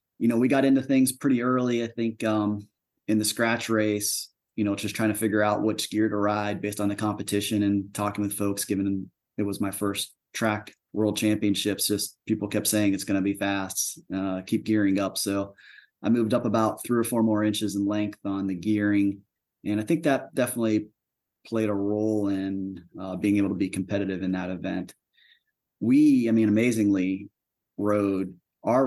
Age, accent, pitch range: 30-49, American, 100-110 Hz